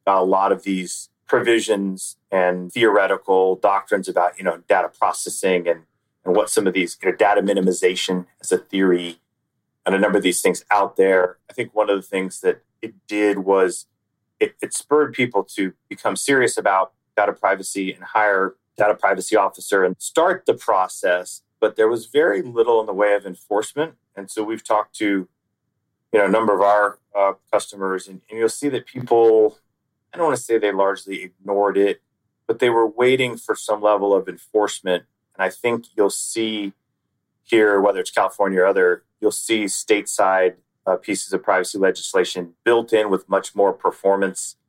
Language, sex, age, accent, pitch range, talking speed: English, male, 30-49, American, 95-115 Hz, 185 wpm